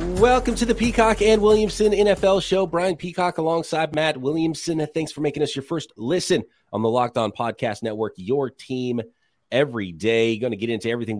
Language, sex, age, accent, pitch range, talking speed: English, male, 30-49, American, 110-160 Hz, 190 wpm